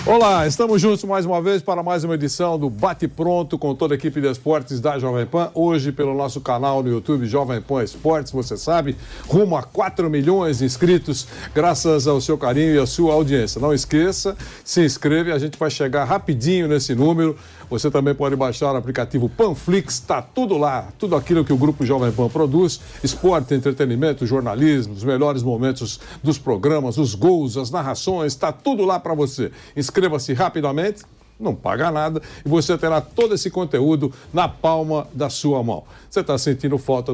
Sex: male